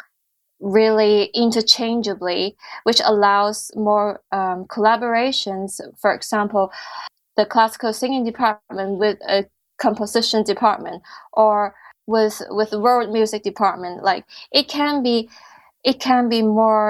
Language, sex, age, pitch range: English, female, 20-39, 200-235 Hz